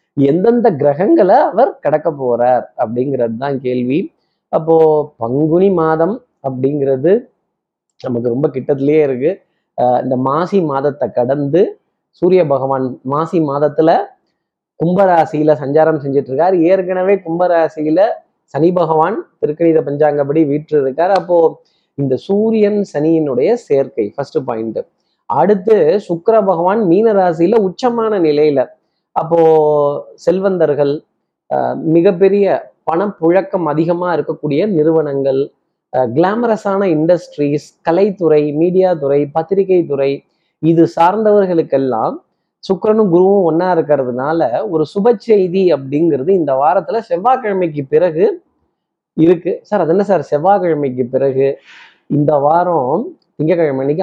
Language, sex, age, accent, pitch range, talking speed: Tamil, male, 20-39, native, 140-190 Hz, 95 wpm